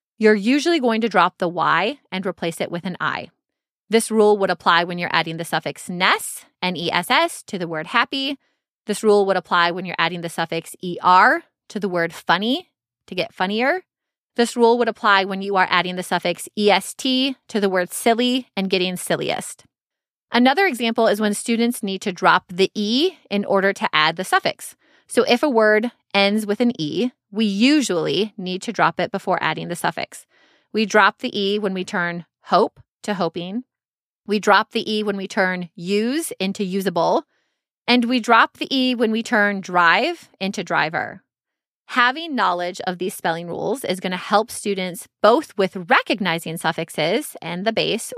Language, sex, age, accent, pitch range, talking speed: English, female, 20-39, American, 180-230 Hz, 180 wpm